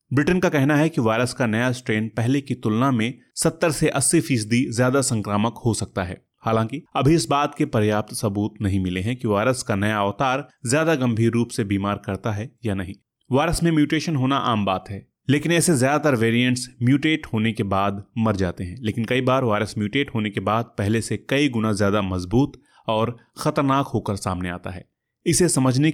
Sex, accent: male, native